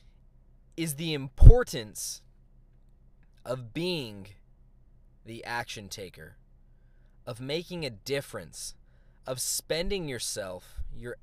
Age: 20-39